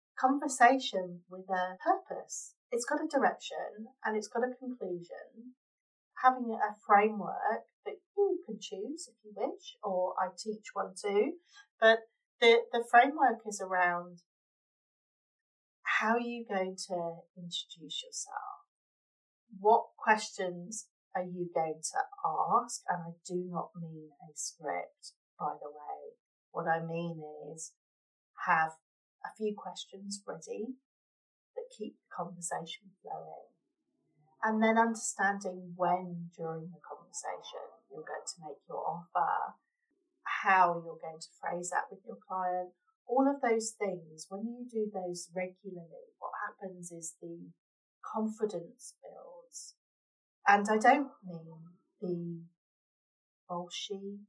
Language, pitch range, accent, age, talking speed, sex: English, 175-255 Hz, British, 40-59, 125 wpm, female